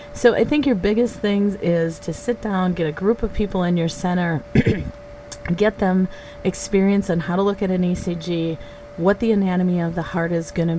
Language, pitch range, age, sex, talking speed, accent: English, 170-205 Hz, 30-49, female, 200 wpm, American